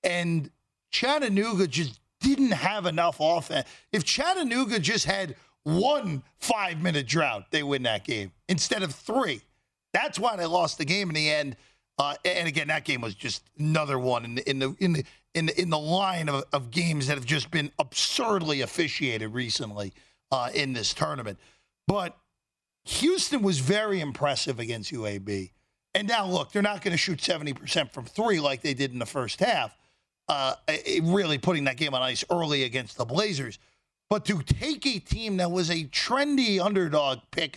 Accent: American